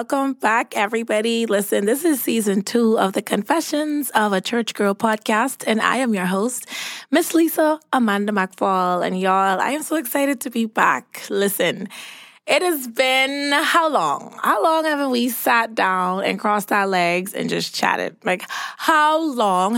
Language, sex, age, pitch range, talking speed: English, female, 20-39, 190-245 Hz, 170 wpm